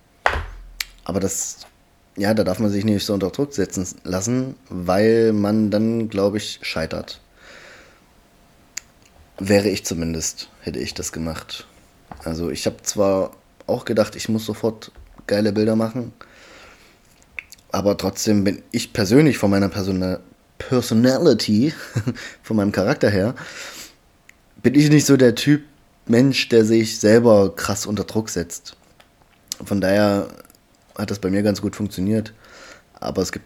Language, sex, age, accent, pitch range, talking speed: German, male, 20-39, German, 95-110 Hz, 140 wpm